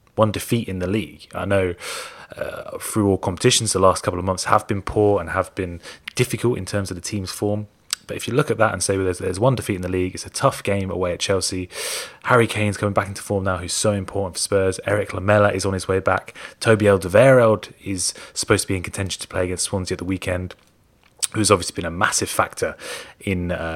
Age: 20-39